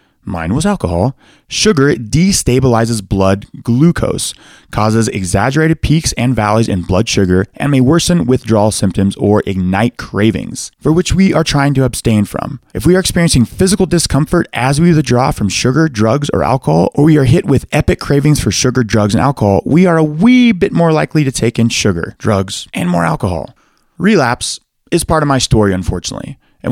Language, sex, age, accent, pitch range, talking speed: English, male, 20-39, American, 105-160 Hz, 180 wpm